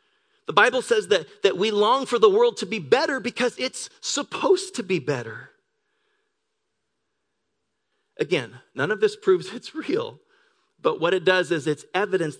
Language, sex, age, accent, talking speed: English, male, 40-59, American, 160 wpm